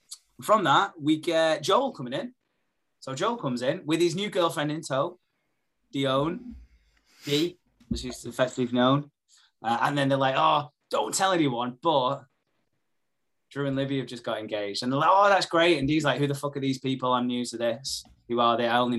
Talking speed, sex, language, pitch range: 200 wpm, male, English, 120-175 Hz